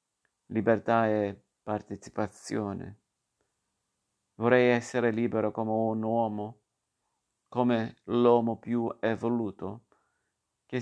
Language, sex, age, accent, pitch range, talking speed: Italian, male, 50-69, native, 105-120 Hz, 80 wpm